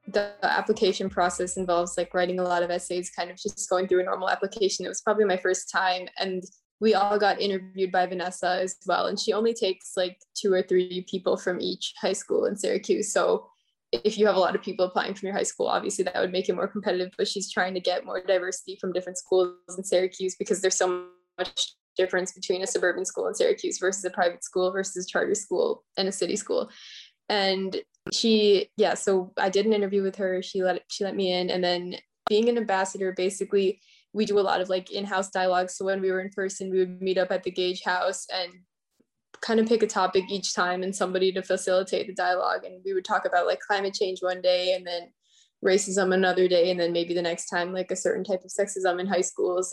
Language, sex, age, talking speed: English, female, 10-29, 230 wpm